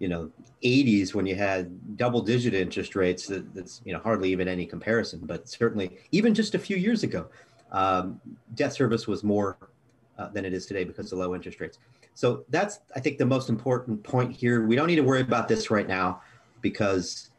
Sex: male